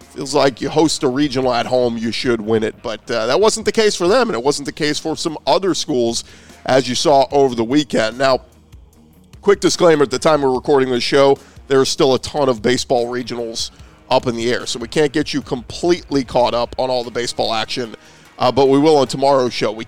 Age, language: 40-59, English